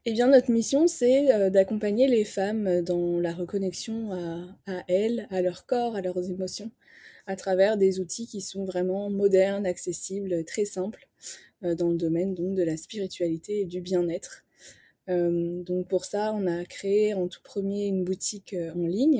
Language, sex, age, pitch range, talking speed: French, female, 20-39, 180-205 Hz, 170 wpm